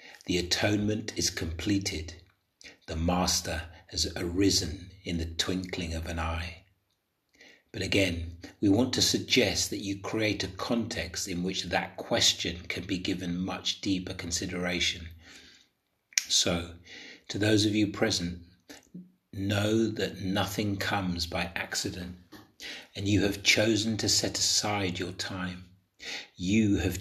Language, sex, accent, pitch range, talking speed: English, male, British, 90-100 Hz, 130 wpm